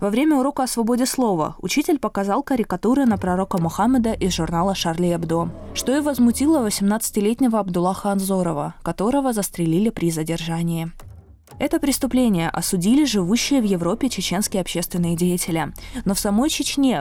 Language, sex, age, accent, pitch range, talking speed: Russian, female, 20-39, native, 175-240 Hz, 140 wpm